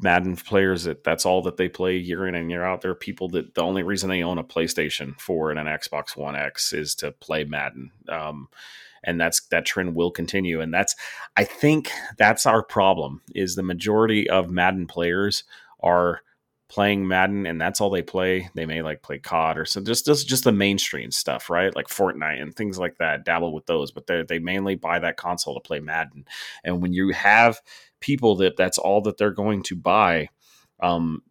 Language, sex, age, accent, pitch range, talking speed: English, male, 30-49, American, 85-115 Hz, 205 wpm